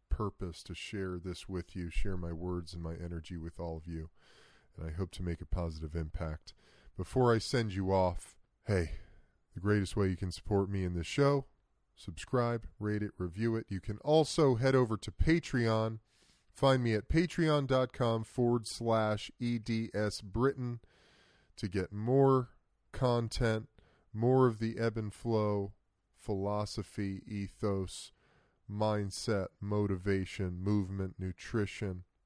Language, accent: English, American